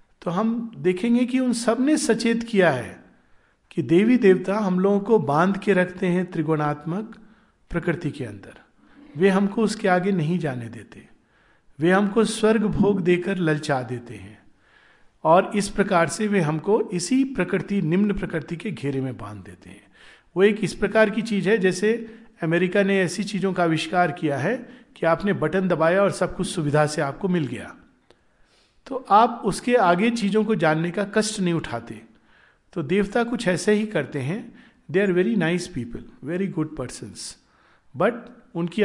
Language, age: Hindi, 50-69